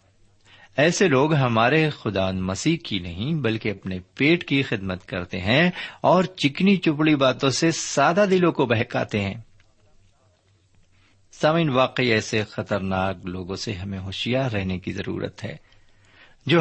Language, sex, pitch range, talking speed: Urdu, male, 100-135 Hz, 135 wpm